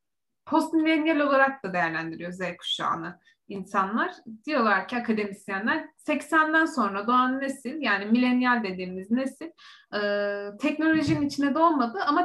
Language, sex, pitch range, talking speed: Turkish, female, 200-290 Hz, 110 wpm